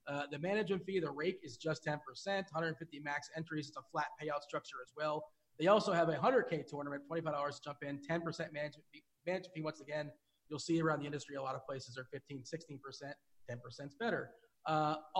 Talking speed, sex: 205 wpm, male